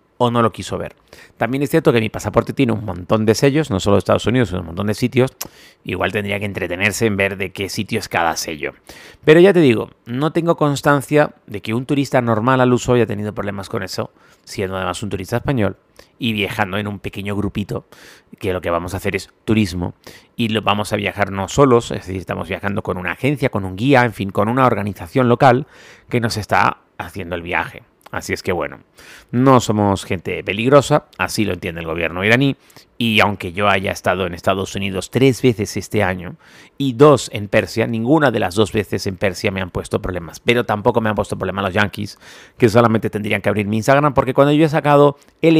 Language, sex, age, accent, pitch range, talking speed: Spanish, male, 30-49, Mexican, 100-130 Hz, 220 wpm